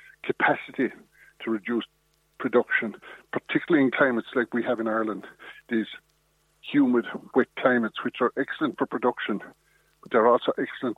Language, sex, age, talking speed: English, male, 60-79, 135 wpm